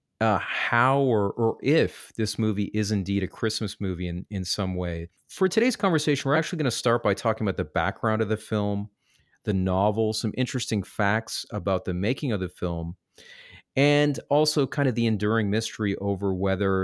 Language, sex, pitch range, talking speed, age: English, male, 95-120 Hz, 185 wpm, 30-49